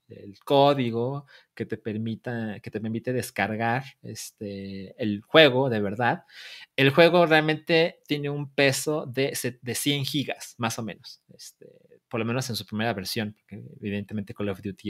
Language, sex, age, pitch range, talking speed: Spanish, male, 30-49, 105-145 Hz, 160 wpm